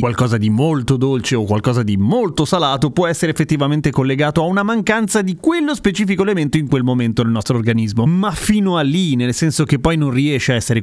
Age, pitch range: 30-49, 125-160 Hz